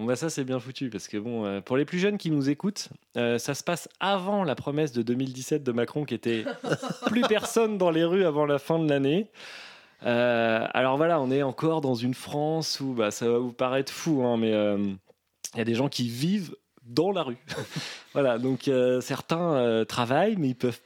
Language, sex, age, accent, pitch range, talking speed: French, male, 20-39, French, 120-170 Hz, 200 wpm